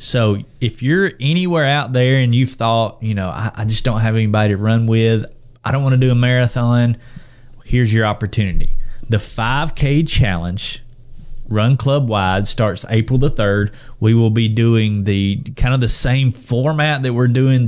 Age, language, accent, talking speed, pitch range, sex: 20-39, English, American, 180 wpm, 110-130 Hz, male